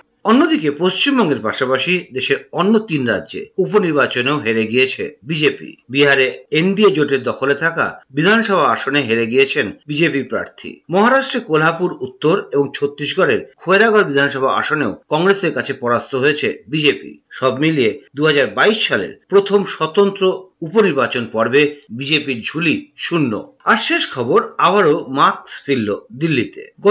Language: Bengali